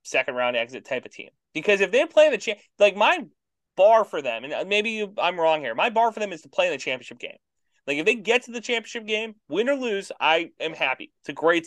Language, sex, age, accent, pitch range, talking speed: English, male, 30-49, American, 165-250 Hz, 260 wpm